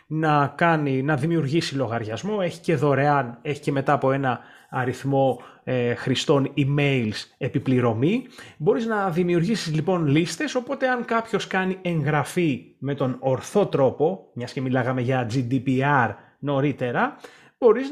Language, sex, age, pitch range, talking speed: Greek, male, 30-49, 135-190 Hz, 130 wpm